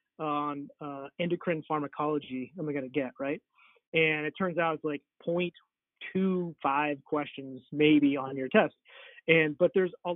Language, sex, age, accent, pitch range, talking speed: English, male, 30-49, American, 140-175 Hz, 150 wpm